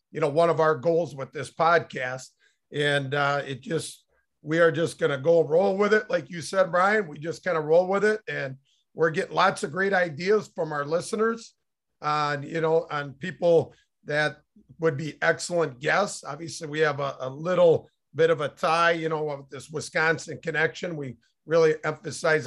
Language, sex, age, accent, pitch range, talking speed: English, male, 50-69, American, 150-180 Hz, 190 wpm